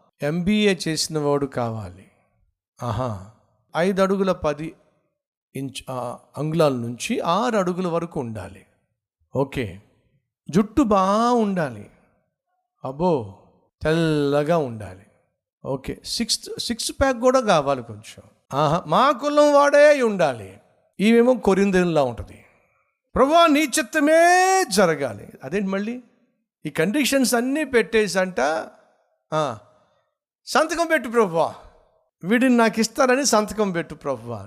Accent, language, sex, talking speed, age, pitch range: native, Telugu, male, 95 wpm, 50-69, 135-225 Hz